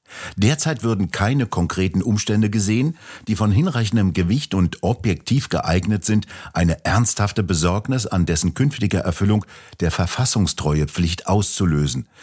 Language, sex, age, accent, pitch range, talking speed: German, male, 60-79, German, 85-110 Hz, 120 wpm